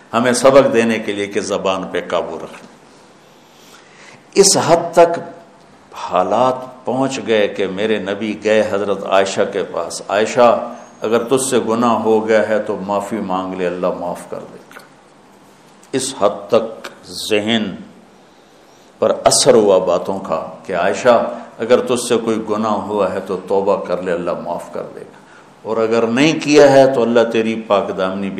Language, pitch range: English, 100-120 Hz